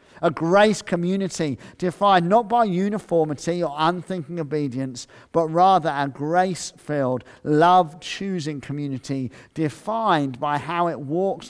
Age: 50-69